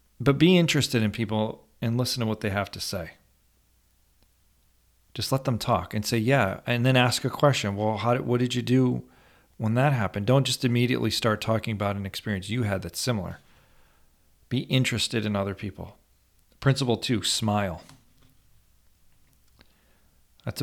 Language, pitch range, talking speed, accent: English, 95-120 Hz, 165 wpm, American